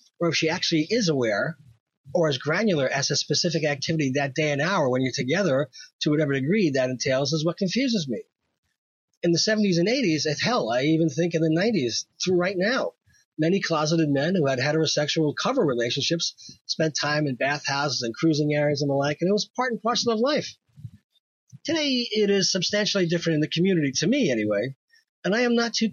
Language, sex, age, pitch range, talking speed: English, male, 40-59, 155-210 Hz, 200 wpm